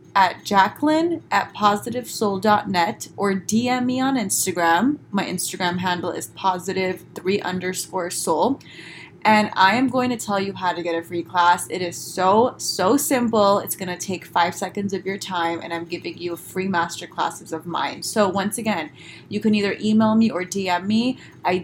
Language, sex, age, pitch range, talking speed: English, female, 20-39, 175-215 Hz, 180 wpm